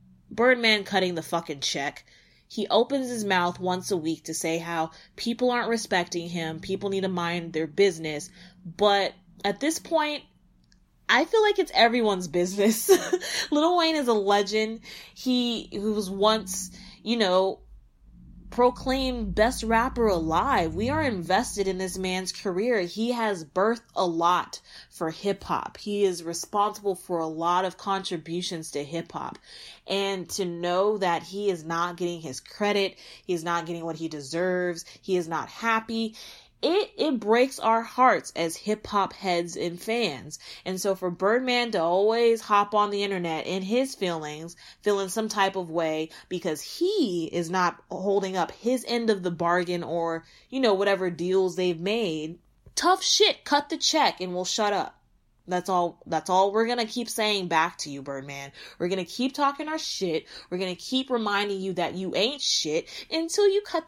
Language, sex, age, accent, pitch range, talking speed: English, female, 20-39, American, 175-225 Hz, 170 wpm